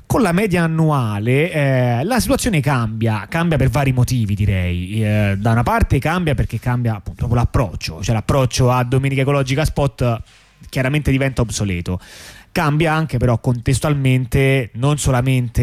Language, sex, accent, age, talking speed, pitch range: Italian, male, native, 30-49, 140 wpm, 115-150 Hz